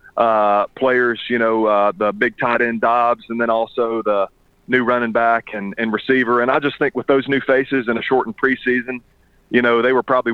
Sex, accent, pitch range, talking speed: male, American, 115-130 Hz, 215 wpm